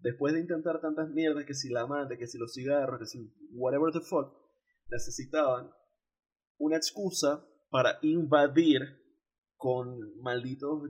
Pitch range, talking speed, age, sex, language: 140-225 Hz, 140 wpm, 20-39, male, Spanish